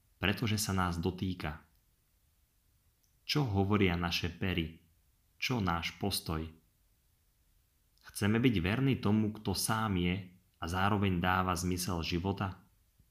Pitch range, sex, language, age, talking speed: 85-105 Hz, male, Slovak, 30-49, 105 wpm